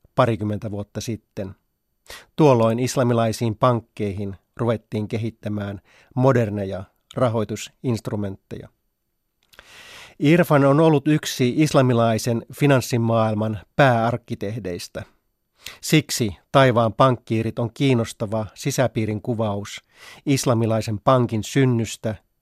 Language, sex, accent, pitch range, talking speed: Finnish, male, native, 110-130 Hz, 70 wpm